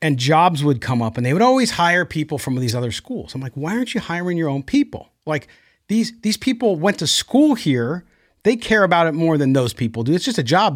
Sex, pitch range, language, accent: male, 130-185 Hz, English, American